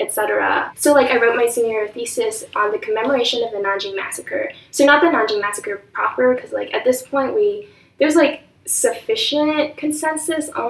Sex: female